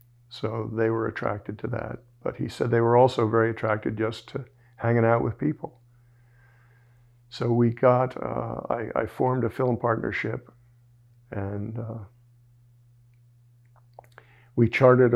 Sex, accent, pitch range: male, American, 115-120 Hz